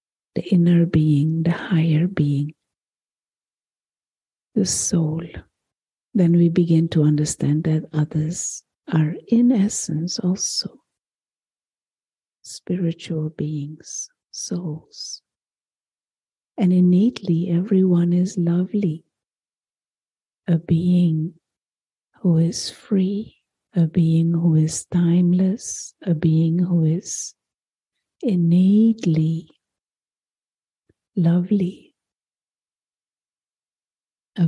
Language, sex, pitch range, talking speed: English, female, 160-185 Hz, 75 wpm